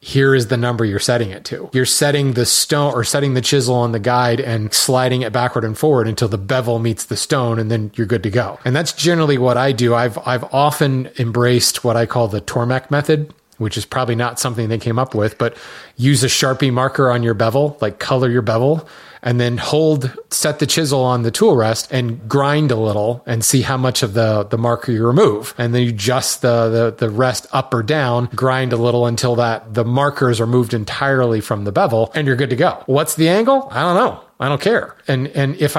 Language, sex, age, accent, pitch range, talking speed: English, male, 30-49, American, 115-140 Hz, 235 wpm